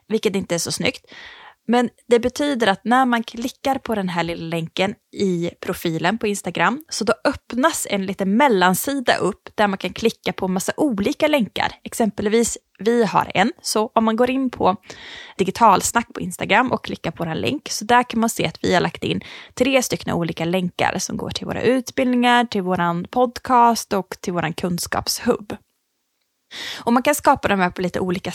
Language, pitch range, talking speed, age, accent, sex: Swedish, 185-245 Hz, 195 wpm, 20-39, Norwegian, female